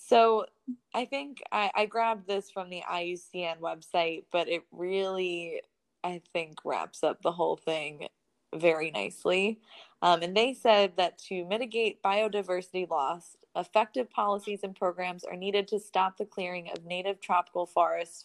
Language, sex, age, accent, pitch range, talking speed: English, female, 20-39, American, 175-225 Hz, 150 wpm